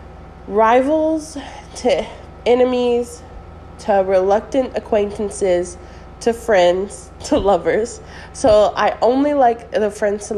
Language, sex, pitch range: English, female, 180-235 Hz